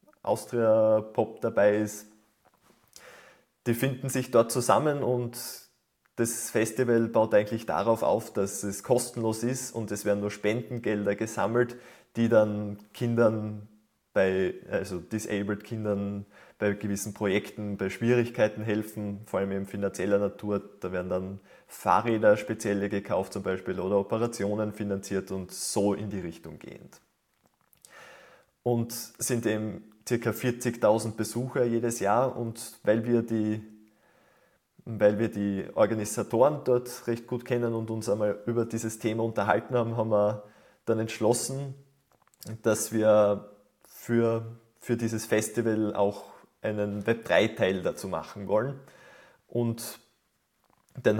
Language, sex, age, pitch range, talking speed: German, male, 20-39, 105-120 Hz, 125 wpm